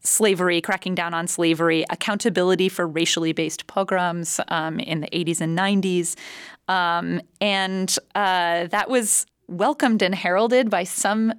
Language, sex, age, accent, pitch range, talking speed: English, female, 30-49, American, 160-195 Hz, 135 wpm